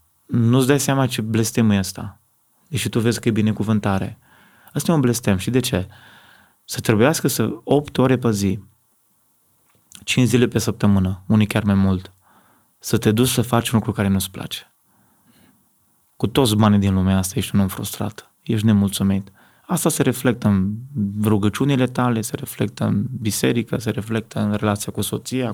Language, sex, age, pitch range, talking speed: Romanian, male, 20-39, 105-125 Hz, 175 wpm